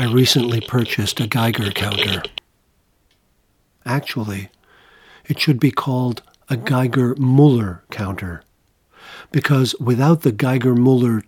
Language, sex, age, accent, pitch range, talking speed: English, male, 50-69, American, 110-140 Hz, 95 wpm